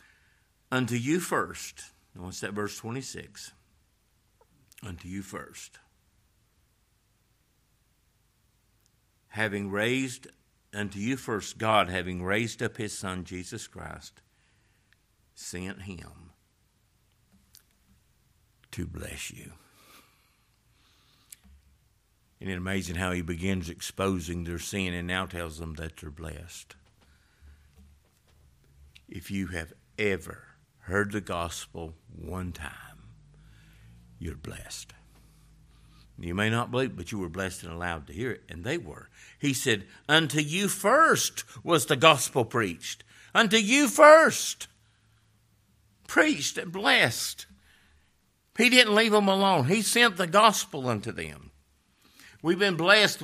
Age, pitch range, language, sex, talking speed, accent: 60-79, 85-130 Hz, English, male, 115 wpm, American